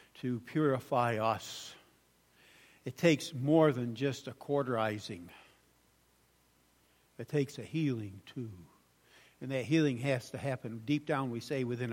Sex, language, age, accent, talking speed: male, English, 60-79, American, 130 wpm